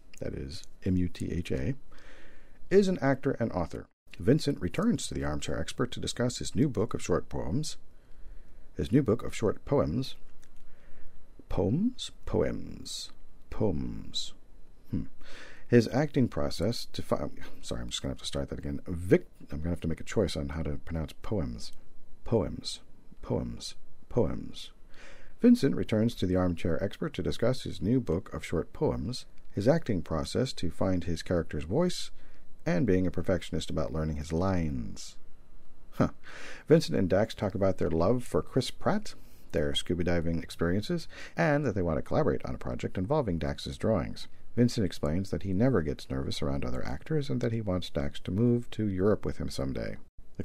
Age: 50-69